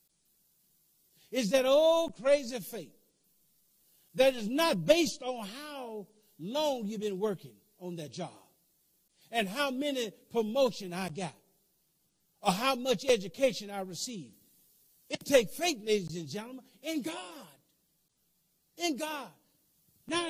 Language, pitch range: English, 175-270 Hz